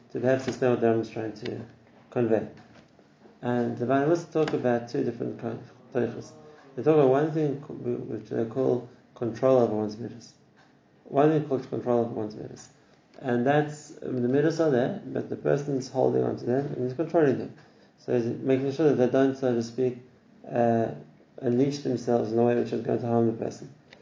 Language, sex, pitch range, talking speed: English, male, 120-140 Hz, 190 wpm